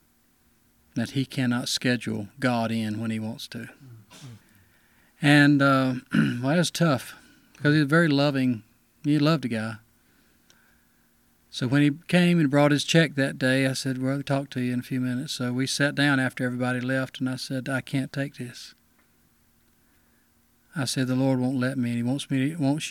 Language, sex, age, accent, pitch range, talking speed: English, male, 40-59, American, 125-150 Hz, 195 wpm